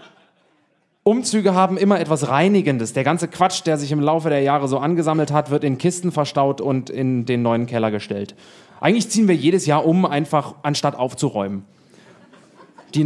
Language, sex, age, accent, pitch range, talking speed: German, male, 30-49, German, 135-180 Hz, 170 wpm